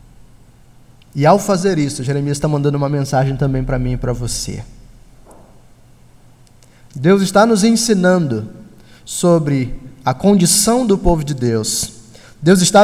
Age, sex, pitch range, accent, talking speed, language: 20-39, male, 130-180 Hz, Brazilian, 130 wpm, Portuguese